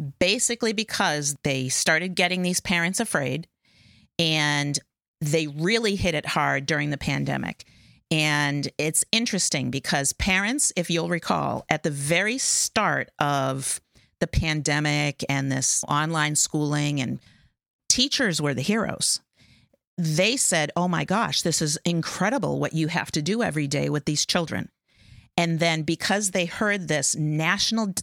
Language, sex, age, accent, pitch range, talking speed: English, female, 40-59, American, 150-195 Hz, 140 wpm